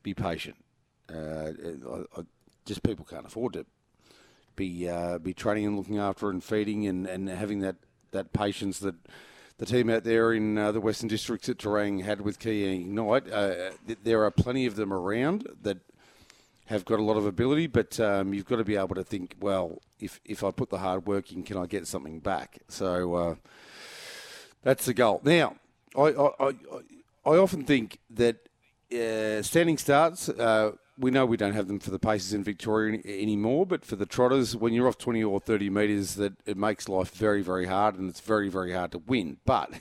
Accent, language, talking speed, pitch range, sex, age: Australian, English, 200 wpm, 95-115 Hz, male, 50-69